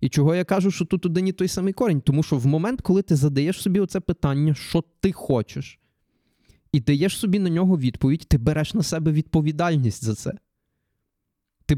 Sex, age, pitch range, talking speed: male, 20-39, 140-175 Hz, 190 wpm